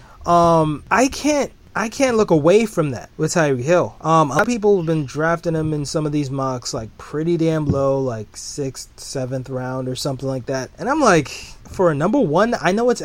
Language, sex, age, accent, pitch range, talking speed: English, male, 30-49, American, 145-185 Hz, 220 wpm